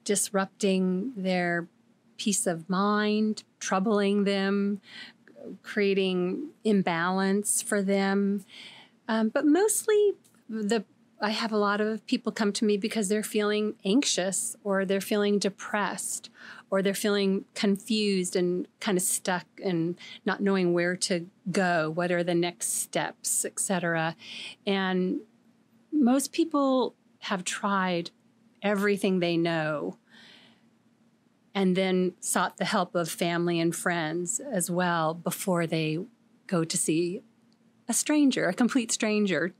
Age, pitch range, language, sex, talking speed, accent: 40-59, 180-225 Hz, English, female, 125 wpm, American